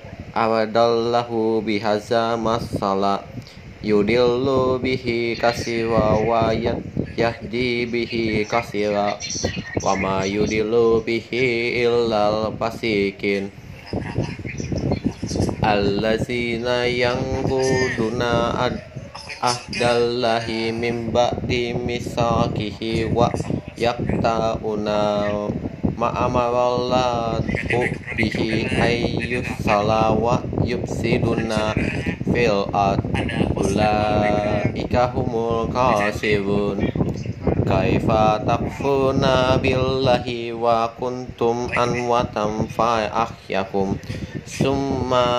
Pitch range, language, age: 105-120 Hz, Indonesian, 30-49